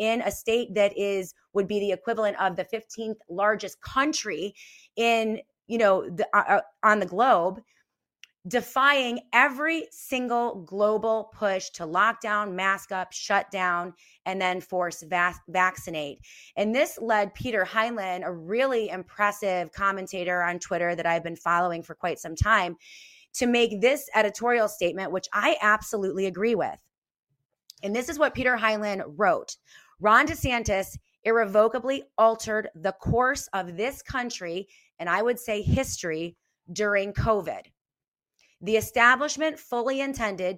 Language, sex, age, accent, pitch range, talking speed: English, female, 30-49, American, 185-235 Hz, 140 wpm